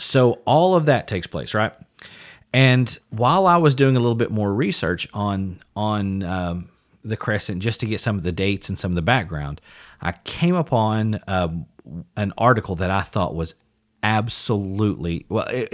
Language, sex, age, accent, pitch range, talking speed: English, male, 40-59, American, 90-120 Hz, 180 wpm